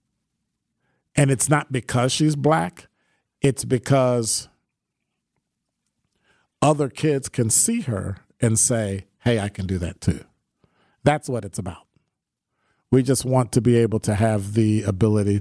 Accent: American